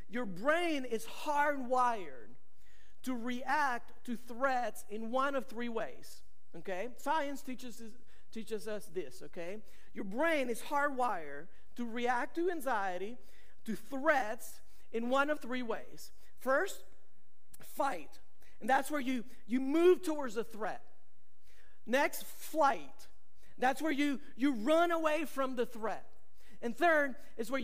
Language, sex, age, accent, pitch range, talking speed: English, male, 50-69, American, 240-310 Hz, 130 wpm